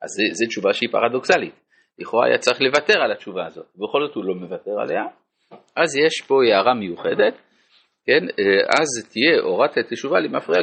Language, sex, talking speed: Hebrew, male, 165 wpm